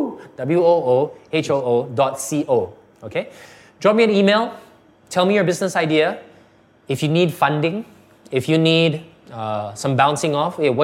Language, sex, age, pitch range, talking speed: English, male, 20-39, 120-165 Hz, 140 wpm